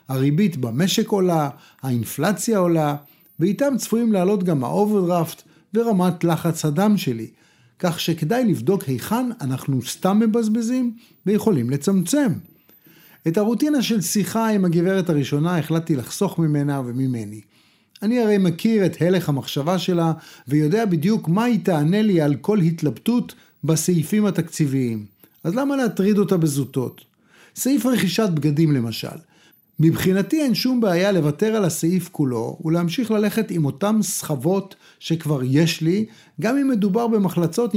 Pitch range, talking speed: 155-210 Hz, 130 wpm